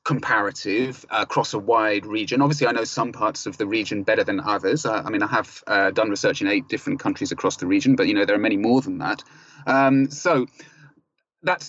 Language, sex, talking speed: English, male, 225 wpm